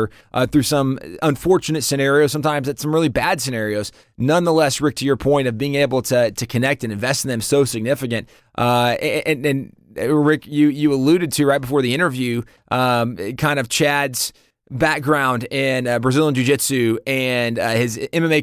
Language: English